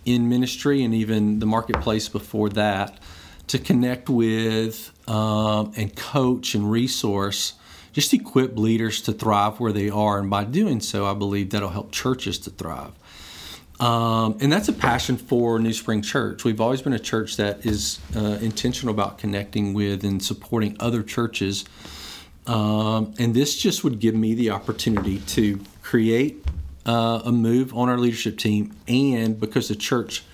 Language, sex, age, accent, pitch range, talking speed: English, male, 40-59, American, 100-120 Hz, 160 wpm